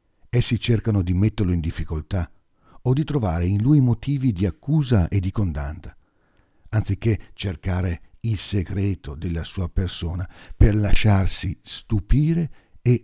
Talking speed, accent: 130 wpm, native